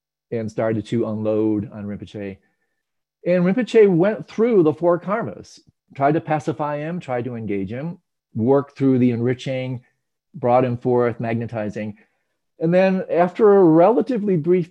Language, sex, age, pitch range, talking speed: English, male, 40-59, 110-165 Hz, 145 wpm